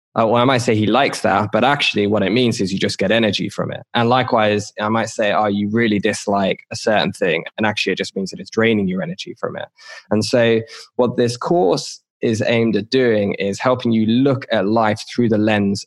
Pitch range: 100-120 Hz